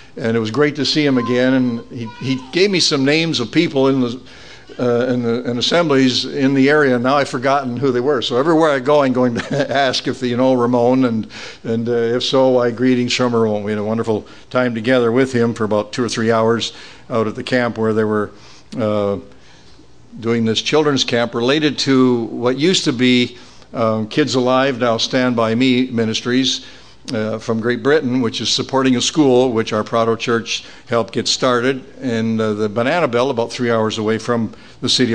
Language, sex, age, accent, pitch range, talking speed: English, male, 60-79, American, 115-135 Hz, 210 wpm